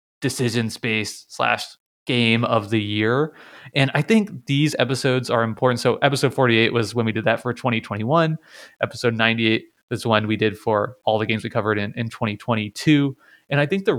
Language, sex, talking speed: English, male, 195 wpm